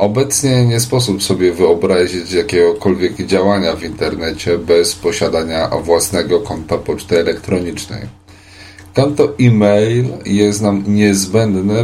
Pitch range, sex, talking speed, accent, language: 90-105 Hz, male, 100 wpm, native, Polish